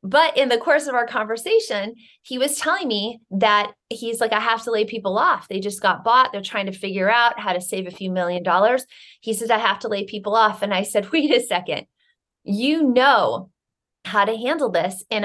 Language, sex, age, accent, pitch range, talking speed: English, female, 30-49, American, 190-235 Hz, 225 wpm